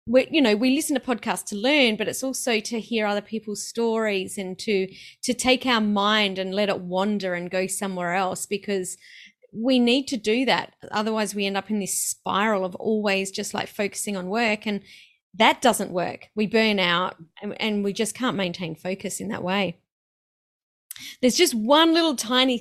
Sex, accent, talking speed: female, Australian, 195 wpm